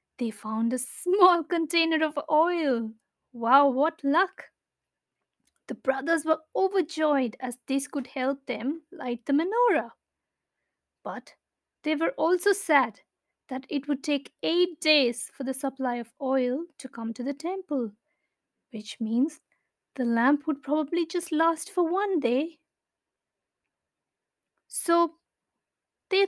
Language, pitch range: English, 245-325 Hz